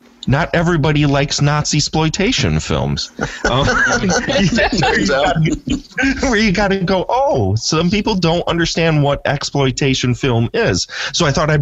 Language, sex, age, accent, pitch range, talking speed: English, male, 30-49, American, 105-145 Hz, 130 wpm